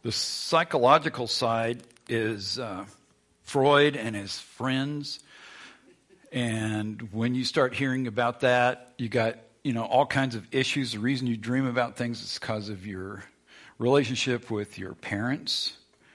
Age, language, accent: 50-69, English, American